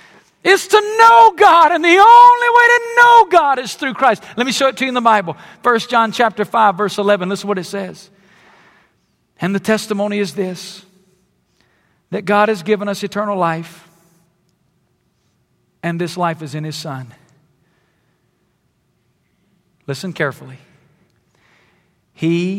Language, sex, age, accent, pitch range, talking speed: English, male, 50-69, American, 145-205 Hz, 150 wpm